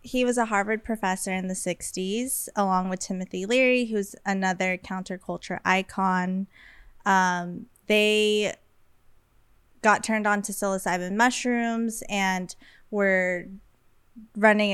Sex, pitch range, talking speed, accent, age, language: female, 180-215 Hz, 110 wpm, American, 20-39, English